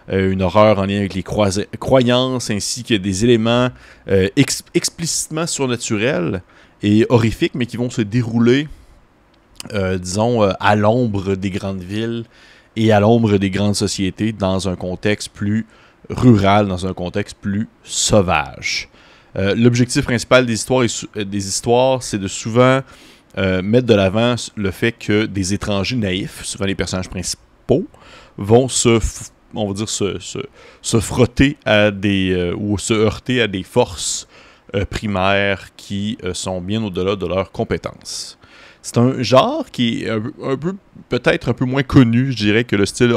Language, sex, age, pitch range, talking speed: French, male, 30-49, 100-120 Hz, 165 wpm